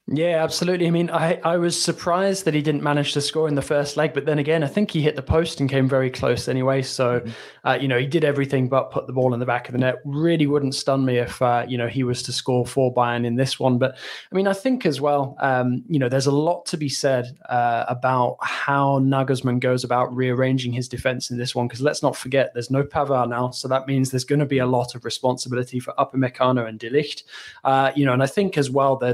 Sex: male